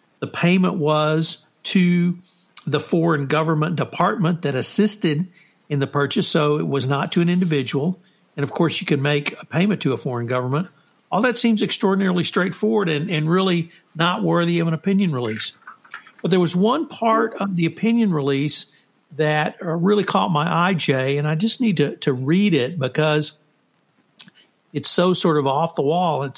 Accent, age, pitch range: American, 60-79, 145-185 Hz